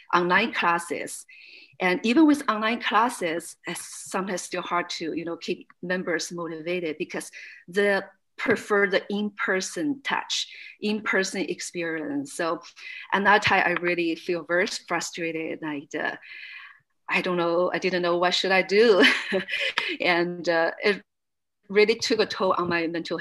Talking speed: 145 wpm